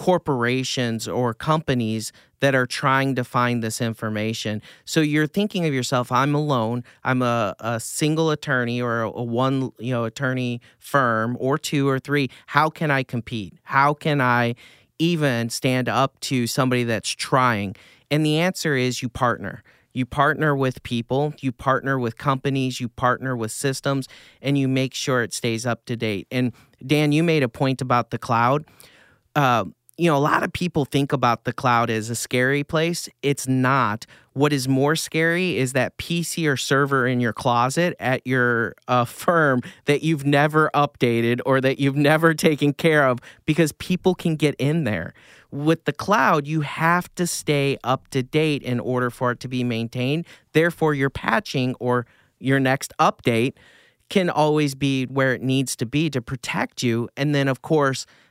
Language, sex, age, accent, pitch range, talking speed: English, male, 40-59, American, 120-150 Hz, 180 wpm